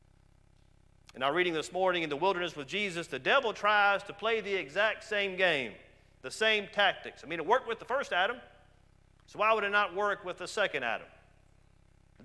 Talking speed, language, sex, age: 200 wpm, English, male, 40-59